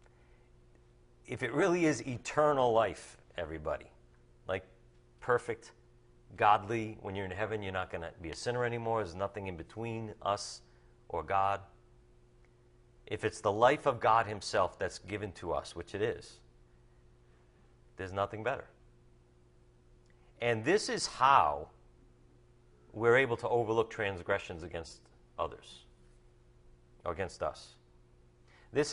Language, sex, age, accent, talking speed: English, male, 40-59, American, 125 wpm